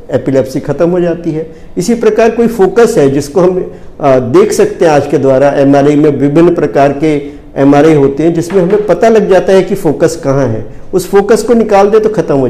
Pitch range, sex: 150-225 Hz, male